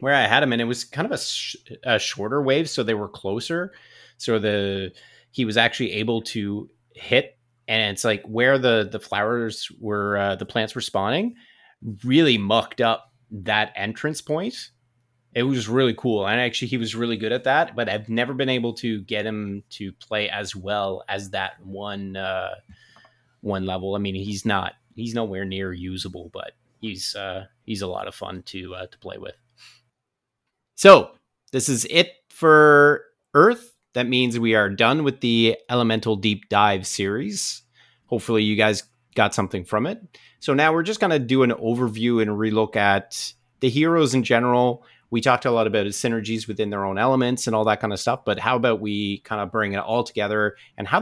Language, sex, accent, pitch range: English, male, American, 105-125 Hz